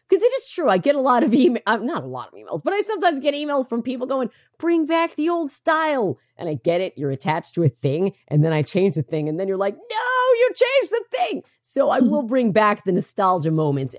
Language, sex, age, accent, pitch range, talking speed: English, female, 30-49, American, 155-225 Hz, 255 wpm